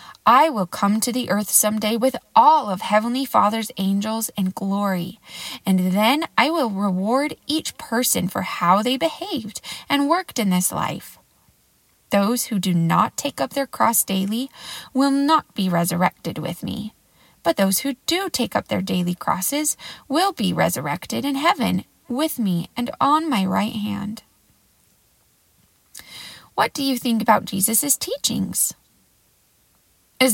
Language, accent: English, American